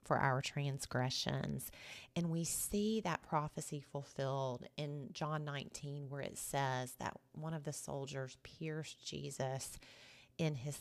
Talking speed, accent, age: 135 wpm, American, 30-49